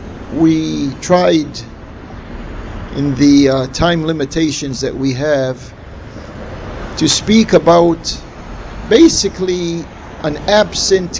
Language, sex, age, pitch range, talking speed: English, male, 50-69, 135-190 Hz, 85 wpm